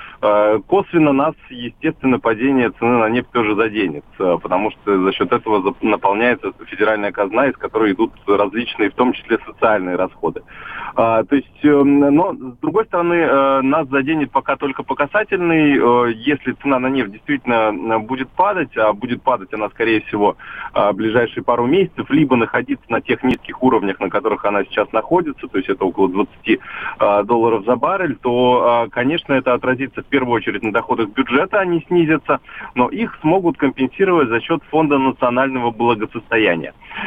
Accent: native